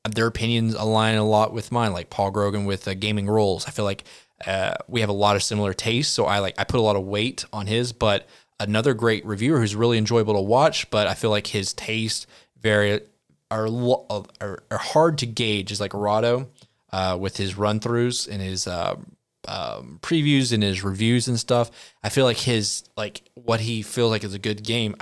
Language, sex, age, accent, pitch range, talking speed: English, male, 20-39, American, 100-115 Hz, 210 wpm